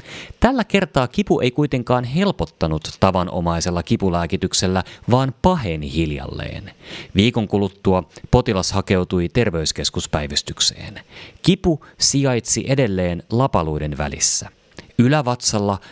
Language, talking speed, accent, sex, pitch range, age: Finnish, 85 wpm, native, male, 90-120 Hz, 30-49